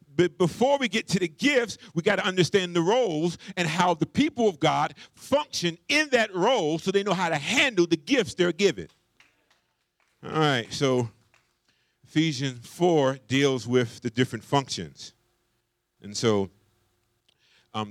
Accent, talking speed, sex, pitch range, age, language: American, 155 wpm, male, 110-145 Hz, 50-69, English